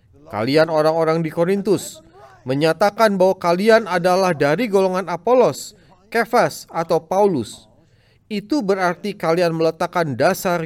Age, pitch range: 30-49, 130-195 Hz